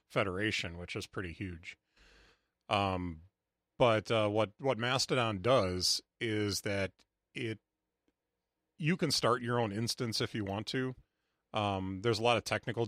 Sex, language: male, English